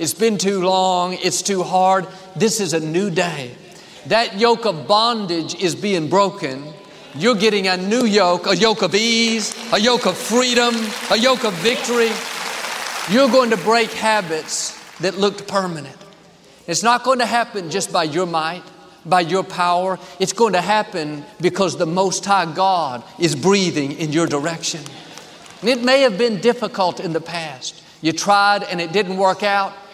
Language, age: English, 50-69